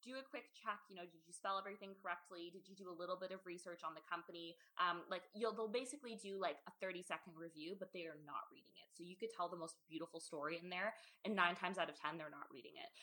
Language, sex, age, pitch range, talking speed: English, female, 20-39, 175-220 Hz, 270 wpm